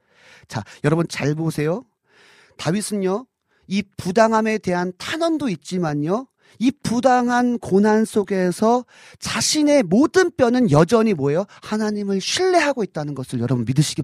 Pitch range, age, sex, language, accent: 155-245 Hz, 40-59, male, Korean, native